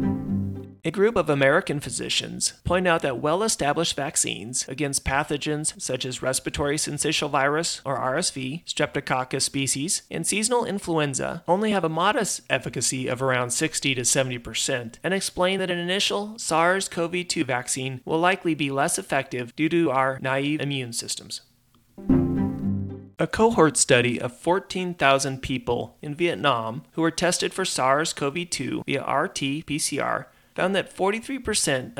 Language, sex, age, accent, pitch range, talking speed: English, male, 30-49, American, 125-165 Hz, 130 wpm